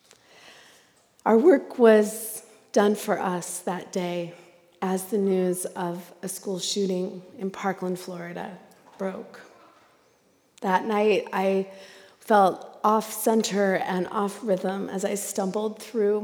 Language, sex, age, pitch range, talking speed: English, female, 30-49, 185-215 Hz, 110 wpm